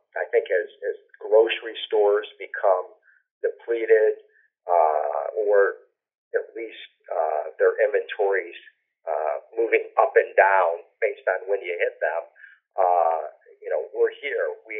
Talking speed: 130 wpm